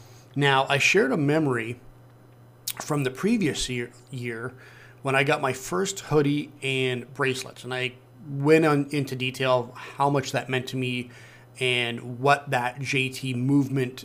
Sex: male